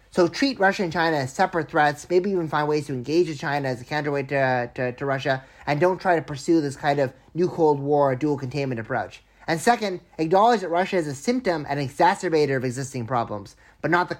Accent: American